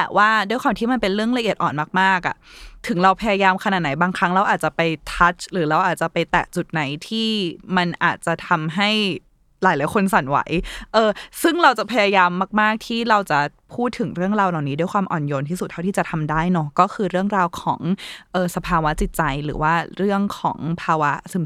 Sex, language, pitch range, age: female, Thai, 165-205 Hz, 20-39